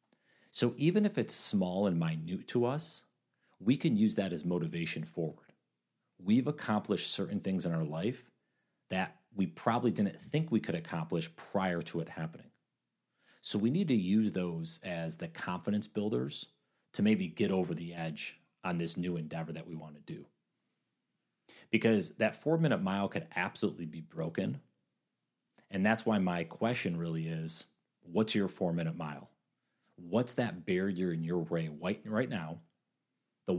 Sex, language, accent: male, English, American